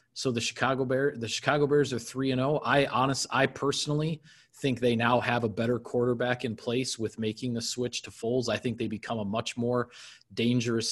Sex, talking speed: male, 200 wpm